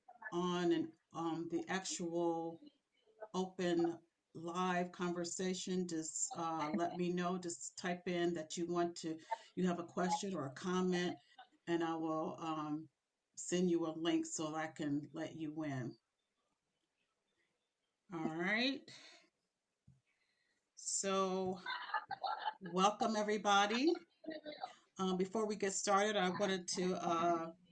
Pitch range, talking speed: 170-215 Hz, 120 wpm